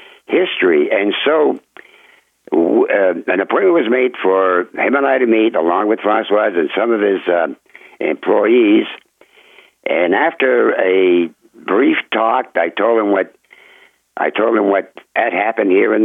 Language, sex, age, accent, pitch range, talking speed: English, male, 60-79, American, 325-445 Hz, 150 wpm